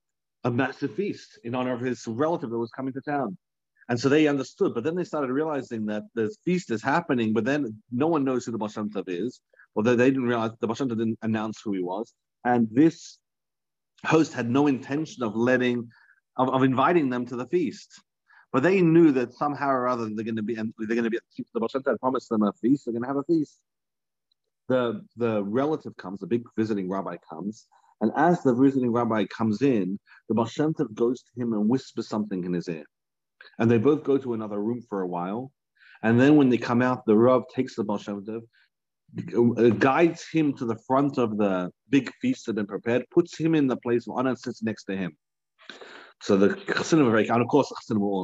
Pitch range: 110-135 Hz